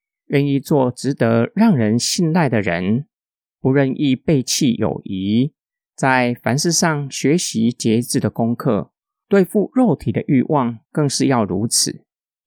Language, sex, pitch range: Chinese, male, 120-165 Hz